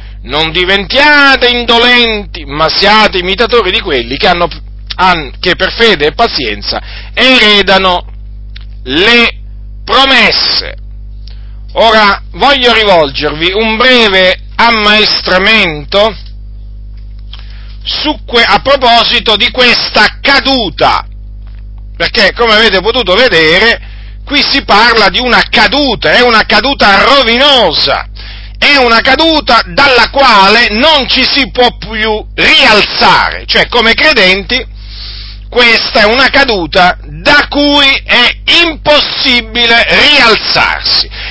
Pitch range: 160-245 Hz